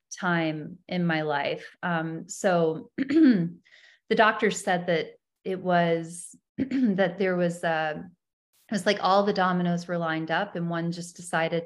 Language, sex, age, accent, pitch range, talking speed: English, female, 30-49, American, 160-180 Hz, 150 wpm